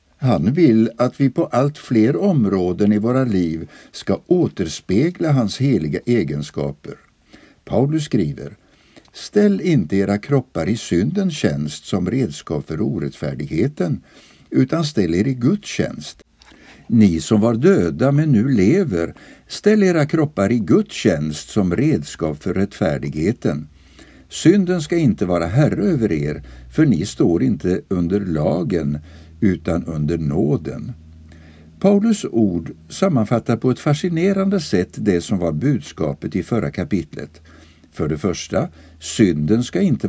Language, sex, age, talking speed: Swedish, male, 60-79, 130 wpm